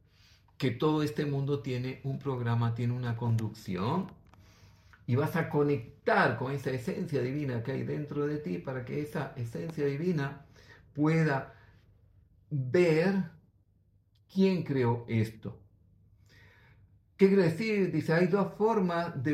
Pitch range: 115-160 Hz